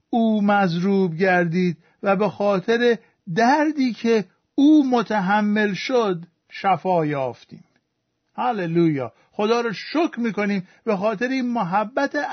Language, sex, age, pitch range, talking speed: Persian, male, 50-69, 185-245 Hz, 105 wpm